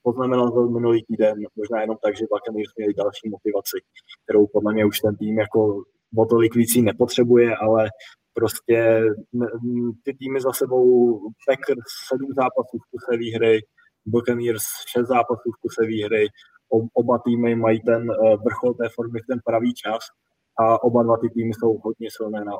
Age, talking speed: 20-39, 155 wpm